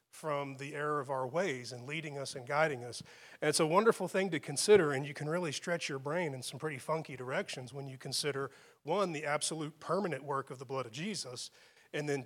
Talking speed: 225 wpm